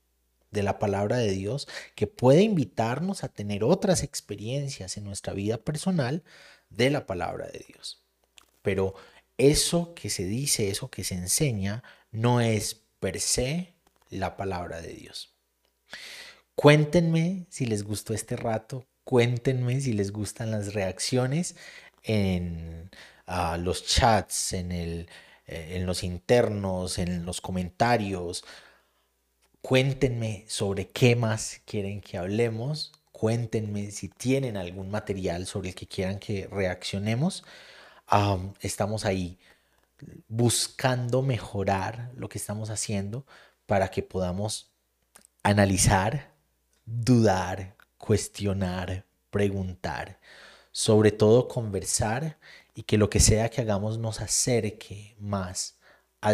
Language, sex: Spanish, male